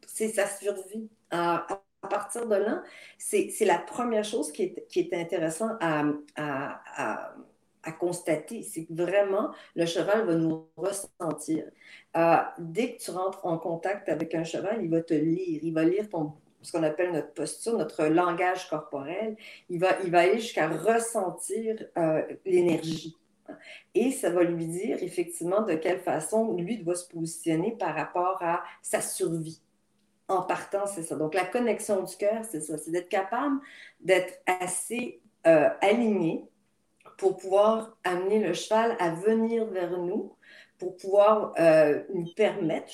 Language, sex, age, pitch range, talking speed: French, female, 50-69, 165-210 Hz, 160 wpm